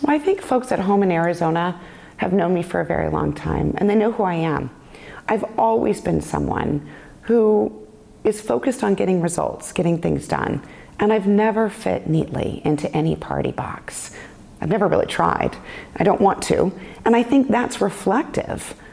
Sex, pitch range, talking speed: female, 175-235 Hz, 180 wpm